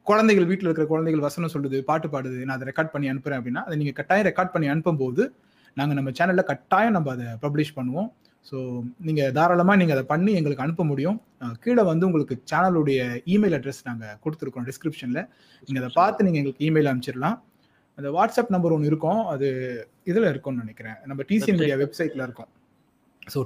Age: 30-49